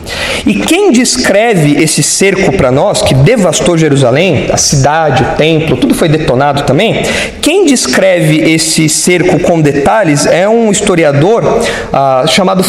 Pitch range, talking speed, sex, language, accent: 165-245 Hz, 130 wpm, male, Portuguese, Brazilian